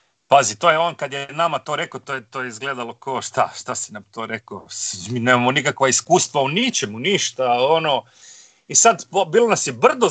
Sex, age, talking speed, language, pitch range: male, 40-59, 210 wpm, Croatian, 140-220 Hz